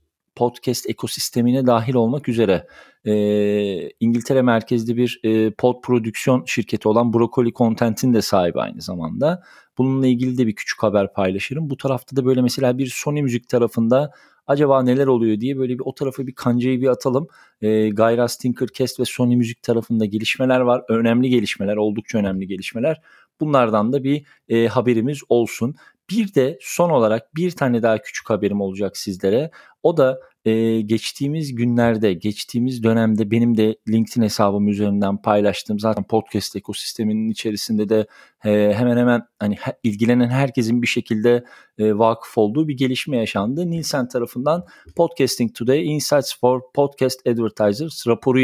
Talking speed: 150 wpm